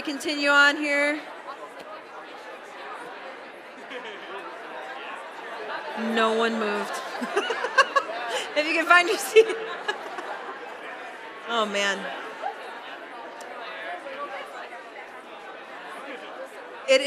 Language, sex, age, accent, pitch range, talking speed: English, female, 30-49, American, 210-270 Hz, 55 wpm